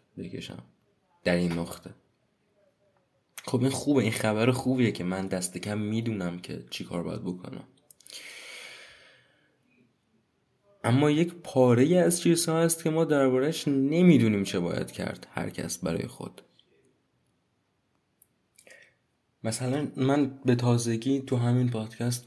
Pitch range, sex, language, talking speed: 95-130 Hz, male, Persian, 115 wpm